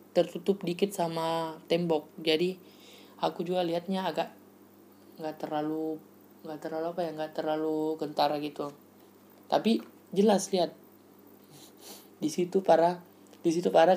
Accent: native